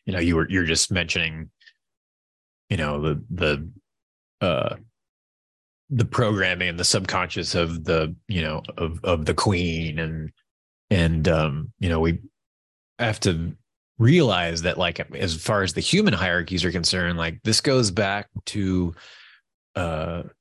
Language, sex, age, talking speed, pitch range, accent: English, male, 30-49, 145 wpm, 85-110 Hz, American